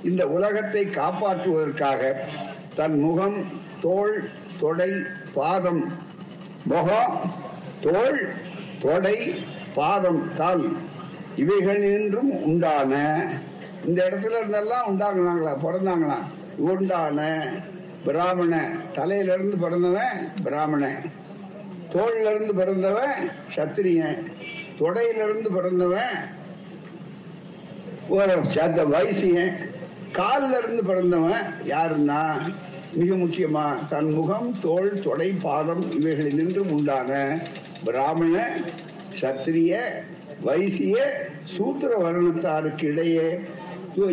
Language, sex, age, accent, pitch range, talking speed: Tamil, male, 60-79, native, 165-200 Hz, 55 wpm